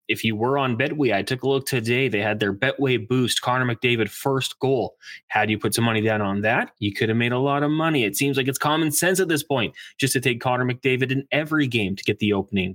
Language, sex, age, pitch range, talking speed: English, male, 20-39, 115-140 Hz, 265 wpm